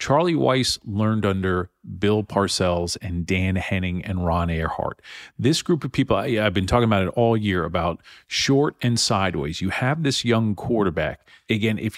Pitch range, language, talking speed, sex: 100-135 Hz, English, 170 wpm, male